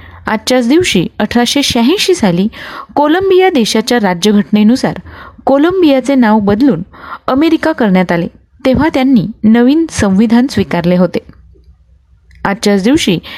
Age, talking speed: 30-49, 100 wpm